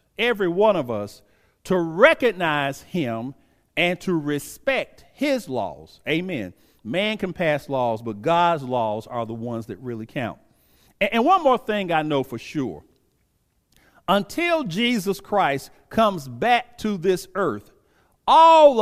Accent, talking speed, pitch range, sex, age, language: American, 135 wpm, 145-215 Hz, male, 50-69, English